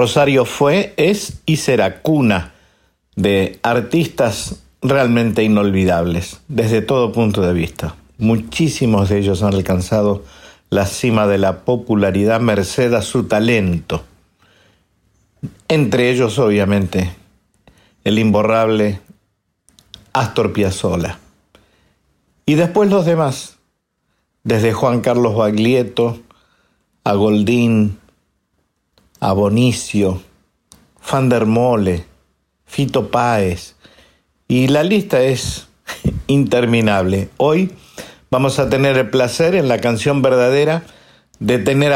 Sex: male